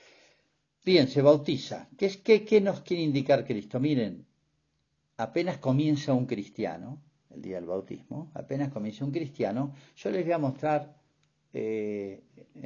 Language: Spanish